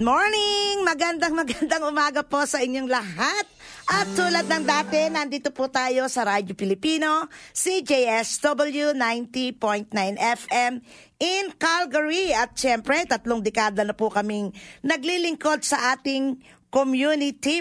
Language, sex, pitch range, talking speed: Filipino, female, 230-295 Hz, 115 wpm